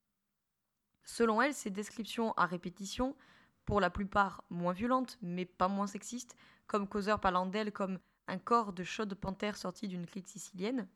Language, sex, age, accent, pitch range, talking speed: French, female, 20-39, French, 185-220 Hz, 160 wpm